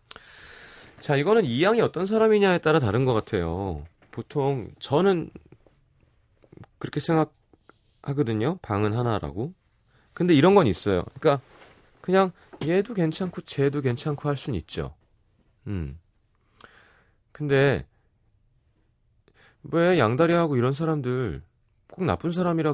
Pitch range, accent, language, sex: 105-150 Hz, native, Korean, male